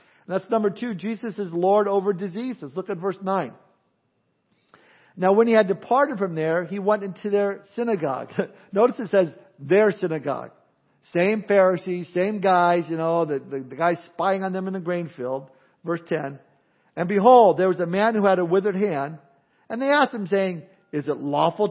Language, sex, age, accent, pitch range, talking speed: English, male, 50-69, American, 160-200 Hz, 185 wpm